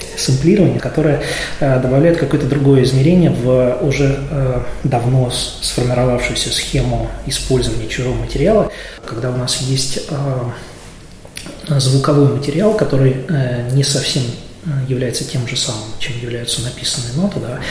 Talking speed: 120 wpm